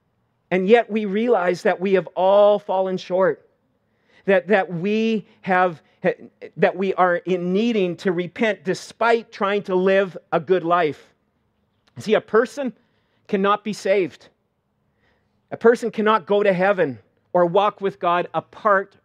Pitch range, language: 190-240 Hz, English